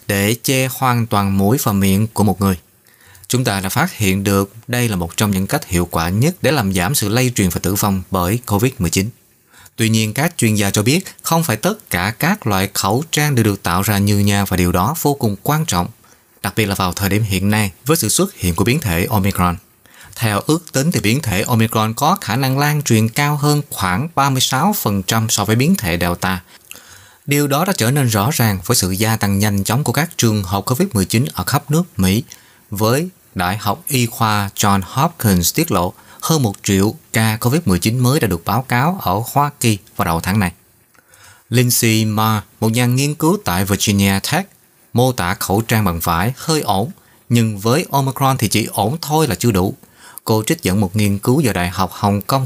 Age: 20-39